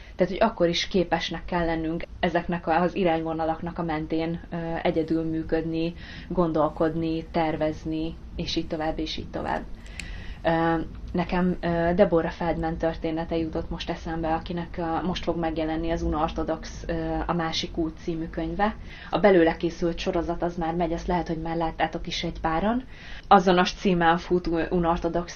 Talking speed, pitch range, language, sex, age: 140 wpm, 165-175 Hz, Hungarian, female, 20-39